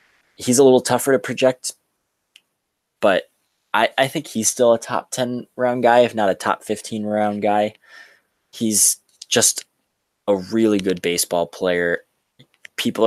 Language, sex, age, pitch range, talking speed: English, male, 20-39, 100-115 Hz, 140 wpm